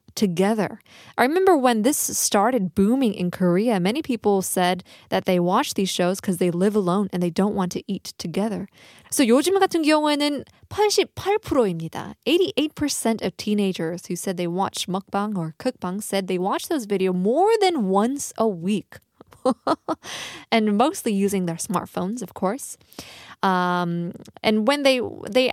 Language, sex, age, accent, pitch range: Korean, female, 20-39, American, 185-255 Hz